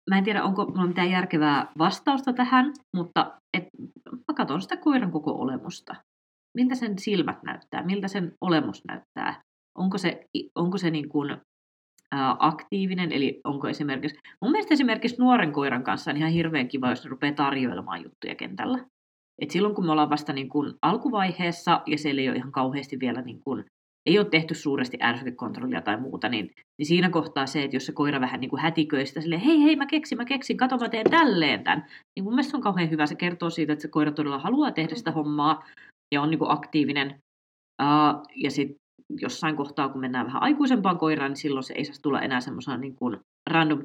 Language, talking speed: Finnish, 195 wpm